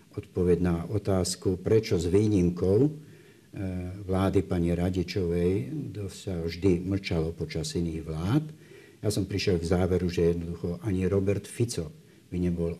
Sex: male